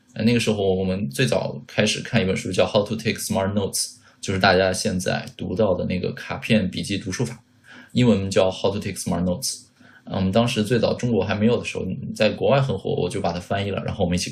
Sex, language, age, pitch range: male, Chinese, 20-39, 95-110 Hz